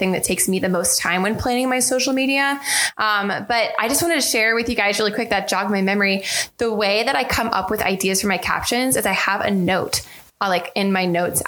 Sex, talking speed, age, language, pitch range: female, 255 wpm, 20-39, English, 185-220 Hz